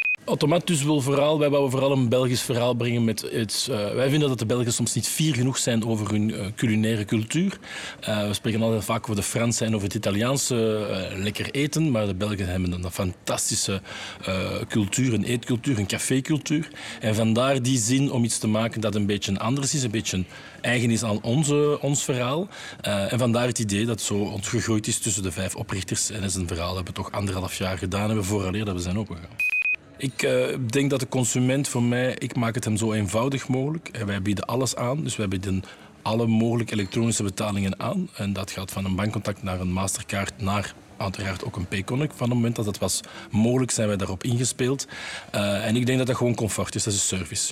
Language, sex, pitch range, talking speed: Dutch, male, 100-125 Hz, 210 wpm